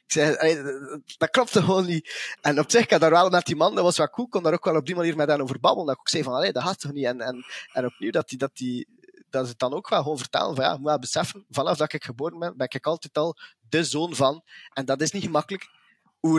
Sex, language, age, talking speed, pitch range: male, English, 20-39, 295 wpm, 135-175 Hz